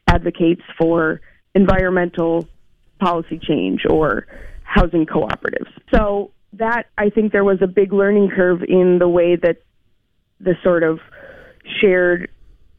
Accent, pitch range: American, 170-195 Hz